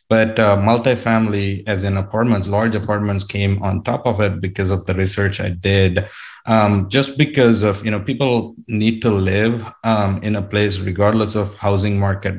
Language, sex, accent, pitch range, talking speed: English, male, Indian, 95-110 Hz, 180 wpm